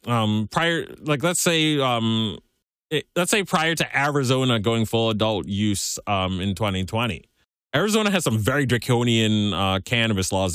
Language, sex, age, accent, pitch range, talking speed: English, male, 30-49, American, 100-130 Hz, 160 wpm